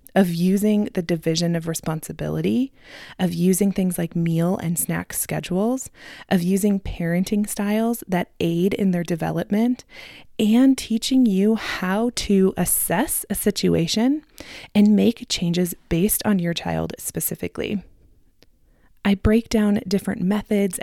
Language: English